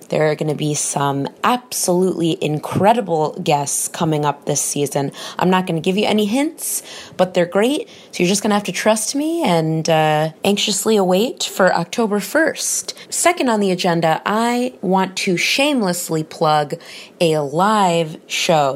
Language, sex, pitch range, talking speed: English, female, 155-210 Hz, 165 wpm